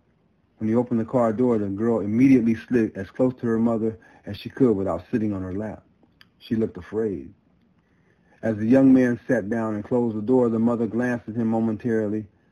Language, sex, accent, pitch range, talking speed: English, male, American, 95-120 Hz, 200 wpm